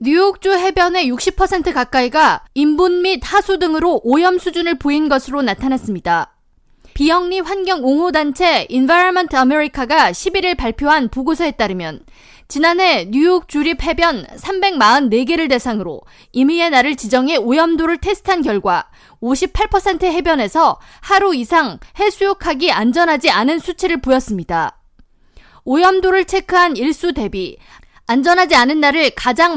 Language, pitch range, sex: Korean, 260-360 Hz, female